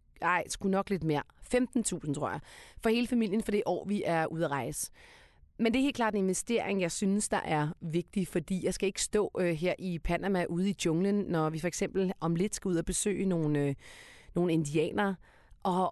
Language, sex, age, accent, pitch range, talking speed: Danish, female, 30-49, native, 175-230 Hz, 220 wpm